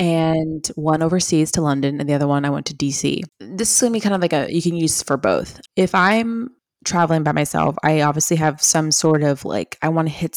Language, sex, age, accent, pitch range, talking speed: English, female, 20-39, American, 150-175 Hz, 235 wpm